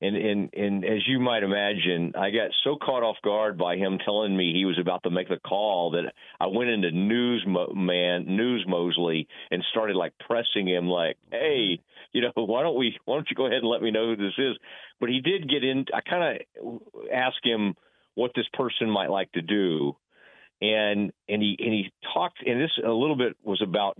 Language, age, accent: English, 40-59, American